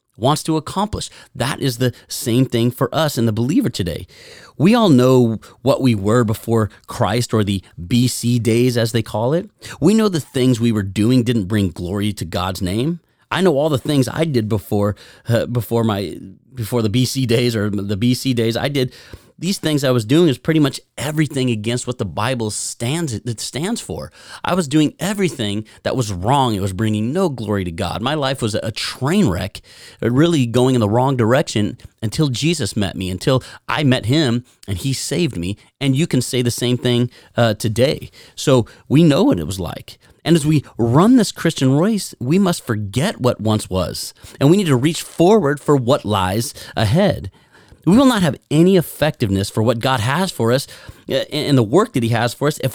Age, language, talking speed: 30-49, English, 205 wpm